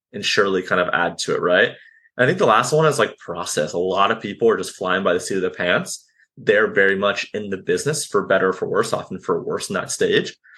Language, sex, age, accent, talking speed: English, male, 20-39, American, 265 wpm